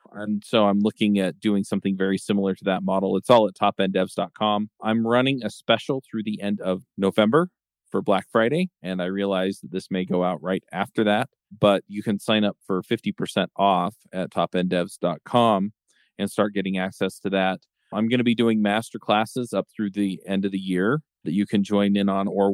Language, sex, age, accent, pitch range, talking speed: English, male, 40-59, American, 95-110 Hz, 200 wpm